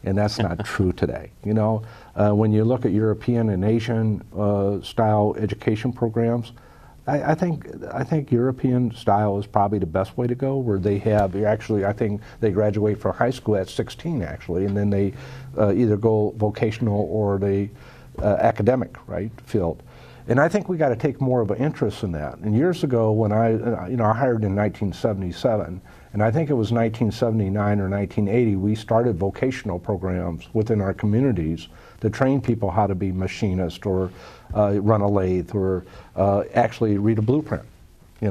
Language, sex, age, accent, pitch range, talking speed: English, male, 50-69, American, 100-125 Hz, 185 wpm